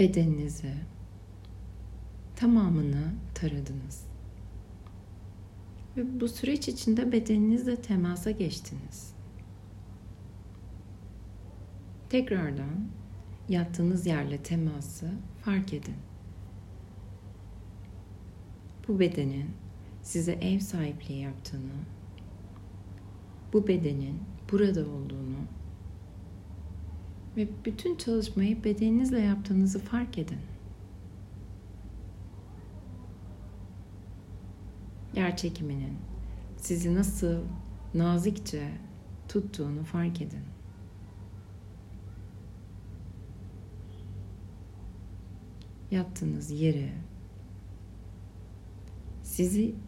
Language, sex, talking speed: Turkish, female, 50 wpm